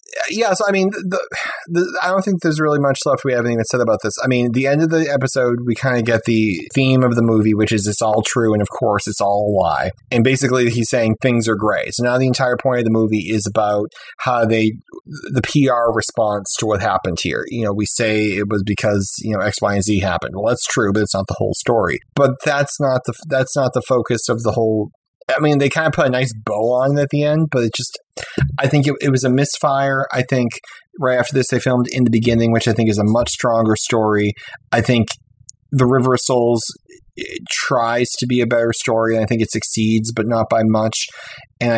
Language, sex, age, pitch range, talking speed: English, male, 30-49, 105-130 Hz, 250 wpm